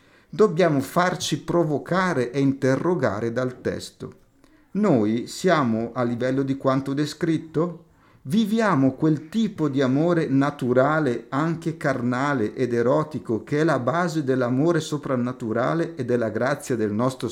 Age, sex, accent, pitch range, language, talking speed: 50-69, male, native, 125-160 Hz, Italian, 120 wpm